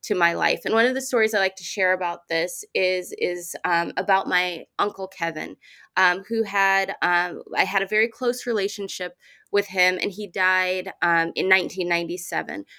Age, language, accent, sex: 20-39, English, American, female